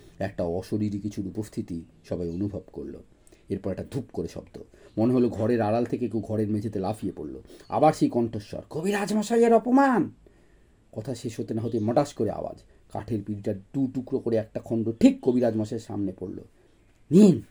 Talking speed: 135 wpm